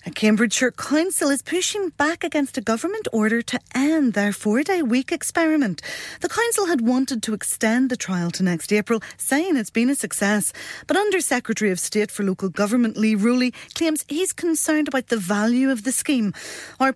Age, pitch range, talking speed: 30-49, 210-285 Hz, 185 wpm